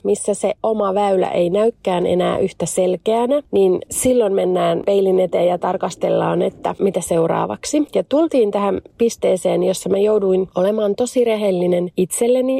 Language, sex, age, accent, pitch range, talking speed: Finnish, female, 30-49, native, 185-220 Hz, 145 wpm